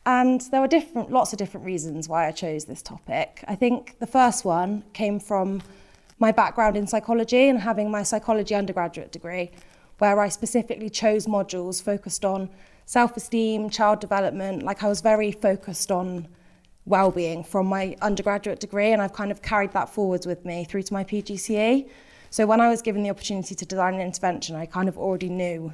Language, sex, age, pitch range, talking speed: English, female, 20-39, 185-220 Hz, 185 wpm